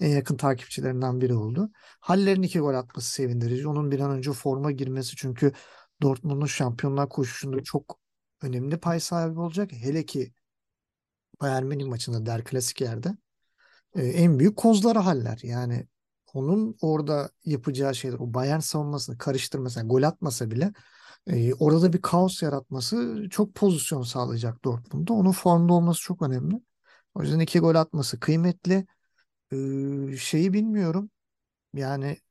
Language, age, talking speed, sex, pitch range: Turkish, 50-69, 135 wpm, male, 130-165 Hz